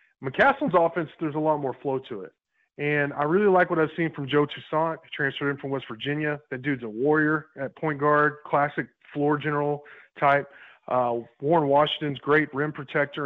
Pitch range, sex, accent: 130-155 Hz, male, American